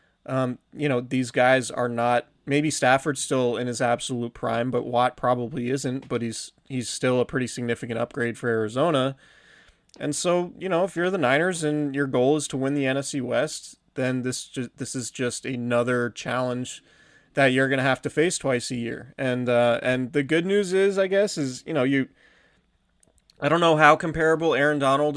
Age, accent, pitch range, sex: 20-39, American, 125-140 Hz, male